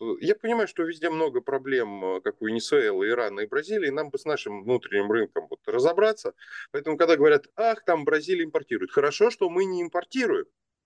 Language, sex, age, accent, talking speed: Russian, male, 20-39, native, 175 wpm